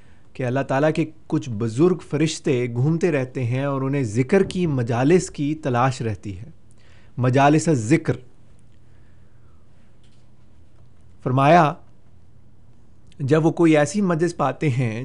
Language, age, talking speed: Urdu, 30-49, 115 wpm